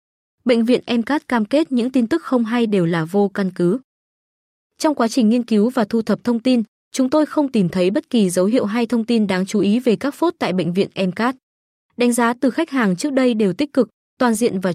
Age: 20-39